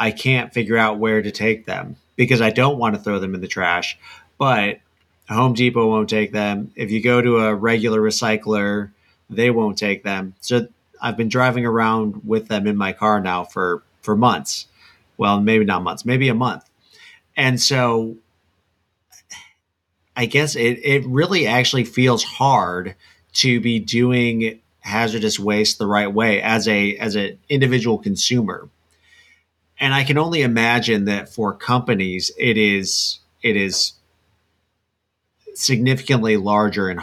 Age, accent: 30-49, American